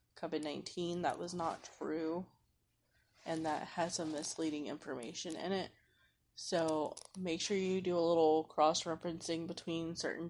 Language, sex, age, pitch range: English, female, 20-39, 155-170 Hz